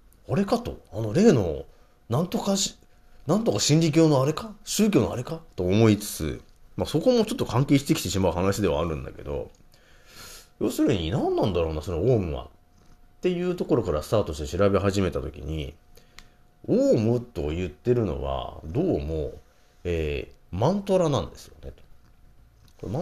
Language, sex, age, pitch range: Japanese, male, 40-59, 80-115 Hz